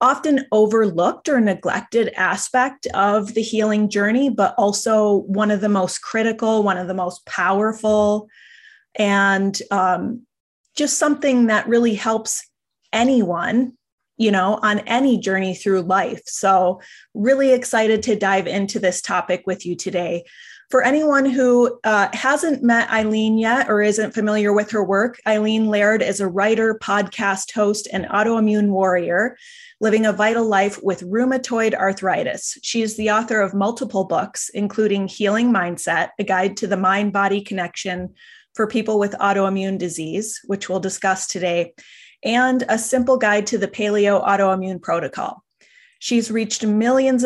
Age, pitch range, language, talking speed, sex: 30-49, 195-230 Hz, English, 145 wpm, female